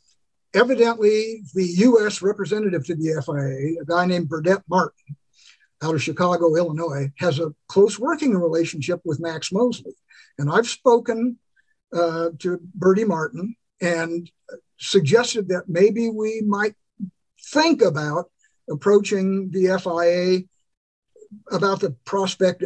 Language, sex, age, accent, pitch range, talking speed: English, male, 50-69, American, 165-205 Hz, 120 wpm